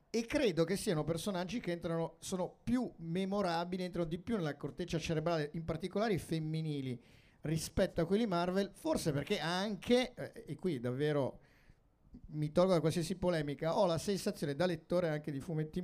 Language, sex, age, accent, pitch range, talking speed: Italian, male, 50-69, native, 145-175 Hz, 165 wpm